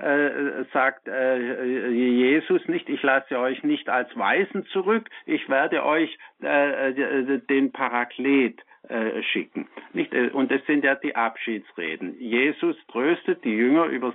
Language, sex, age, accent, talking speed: German, male, 60-79, German, 140 wpm